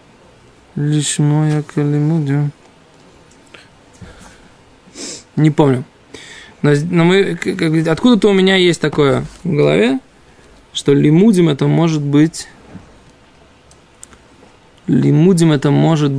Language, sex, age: Russian, male, 20-39